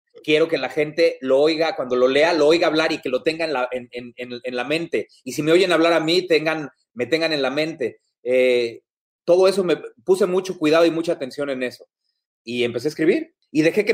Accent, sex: Mexican, male